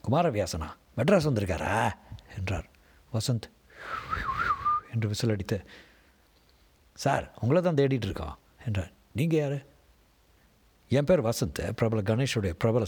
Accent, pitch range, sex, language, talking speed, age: native, 85-130 Hz, male, Tamil, 105 wpm, 60-79